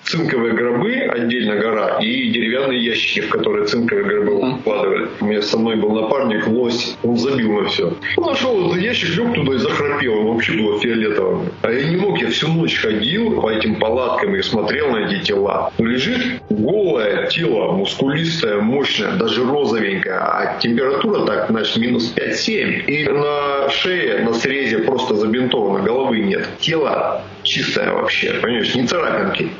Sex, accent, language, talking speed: male, native, Russian, 160 wpm